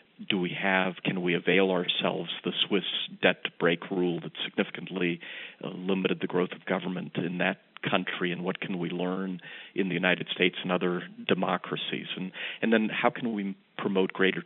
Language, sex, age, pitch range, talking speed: English, male, 40-59, 90-95 Hz, 170 wpm